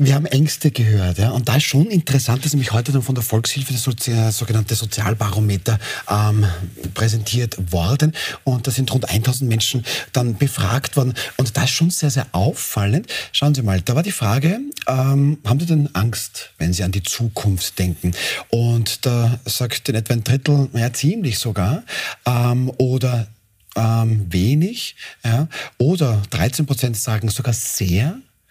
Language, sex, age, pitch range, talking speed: German, male, 40-59, 110-140 Hz, 165 wpm